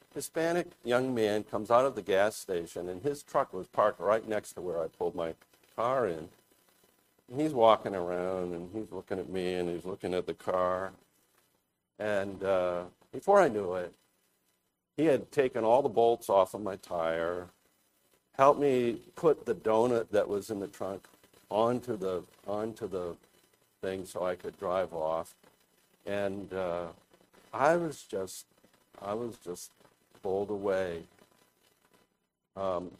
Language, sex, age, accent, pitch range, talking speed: English, male, 50-69, American, 90-115 Hz, 155 wpm